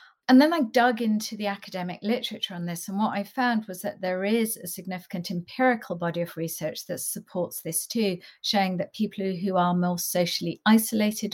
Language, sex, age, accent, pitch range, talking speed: English, female, 50-69, British, 180-220 Hz, 190 wpm